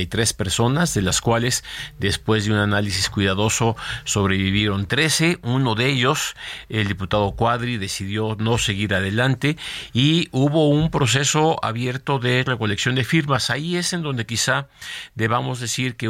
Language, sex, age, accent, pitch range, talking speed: Spanish, male, 50-69, Mexican, 100-125 Hz, 145 wpm